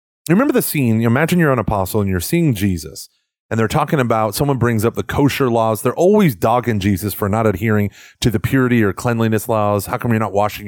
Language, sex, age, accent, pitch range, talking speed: English, male, 30-49, American, 105-145 Hz, 230 wpm